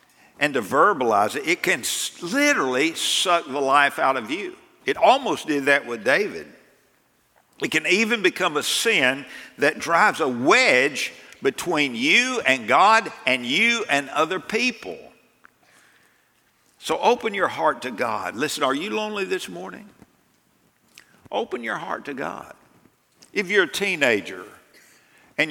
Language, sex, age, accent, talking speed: English, male, 60-79, American, 140 wpm